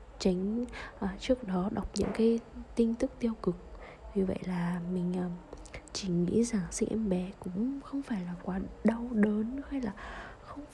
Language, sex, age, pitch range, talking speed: Vietnamese, female, 20-39, 180-220 Hz, 170 wpm